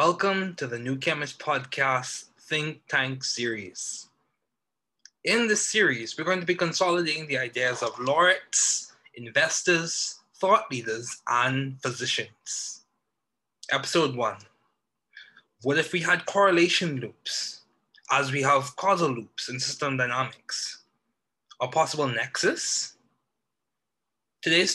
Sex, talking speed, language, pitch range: male, 110 wpm, English, 125-170 Hz